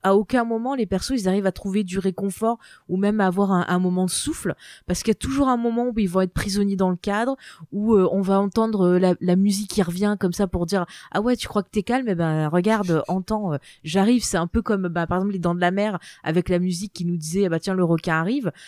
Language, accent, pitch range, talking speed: French, French, 175-210 Hz, 285 wpm